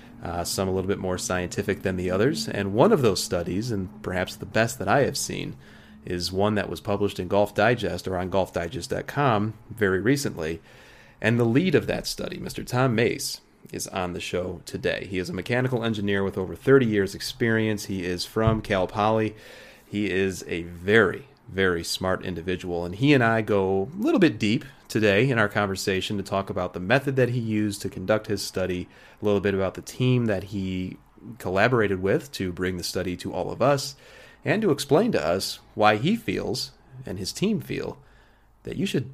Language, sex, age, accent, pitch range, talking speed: English, male, 30-49, American, 95-120 Hz, 200 wpm